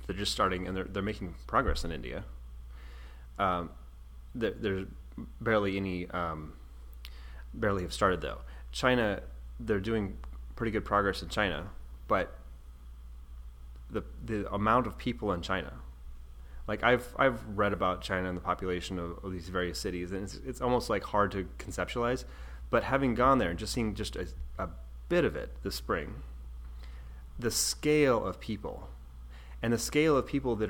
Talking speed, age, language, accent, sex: 160 wpm, 30-49, English, American, male